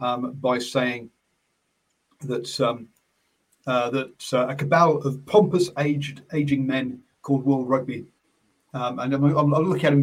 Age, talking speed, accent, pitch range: 40-59, 150 wpm, British, 120-145 Hz